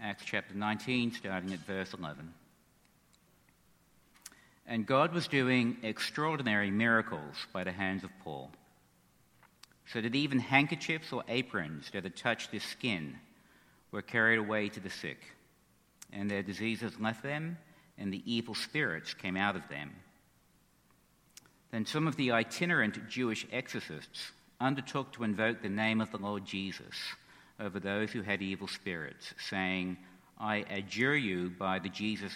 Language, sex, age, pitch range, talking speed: English, male, 60-79, 95-125 Hz, 145 wpm